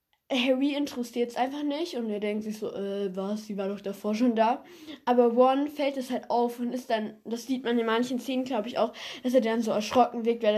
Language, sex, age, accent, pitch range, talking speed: German, female, 10-29, German, 220-270 Hz, 245 wpm